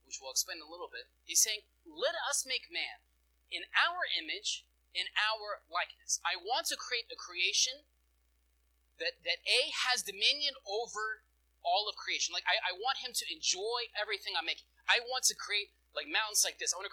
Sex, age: male, 30-49